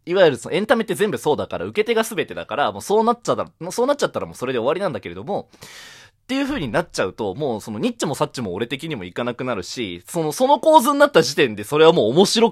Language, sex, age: Japanese, male, 20-39